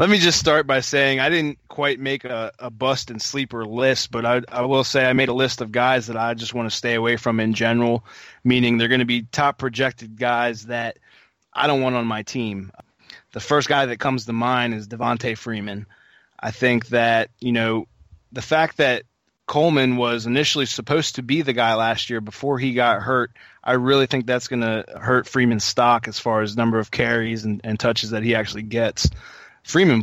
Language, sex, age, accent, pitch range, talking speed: English, male, 20-39, American, 110-130 Hz, 210 wpm